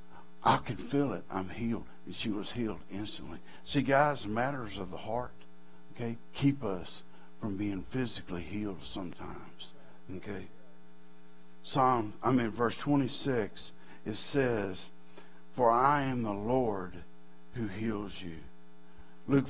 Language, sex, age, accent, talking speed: English, male, 60-79, American, 130 wpm